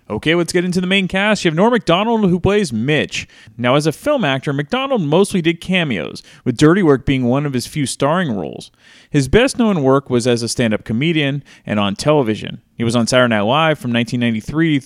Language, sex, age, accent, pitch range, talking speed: English, male, 30-49, American, 120-185 Hz, 210 wpm